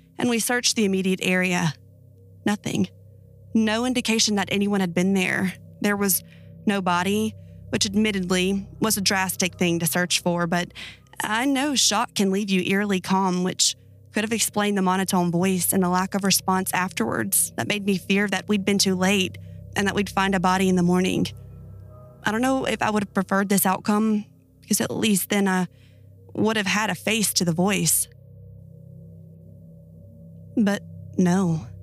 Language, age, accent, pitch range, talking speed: English, 20-39, American, 170-205 Hz, 175 wpm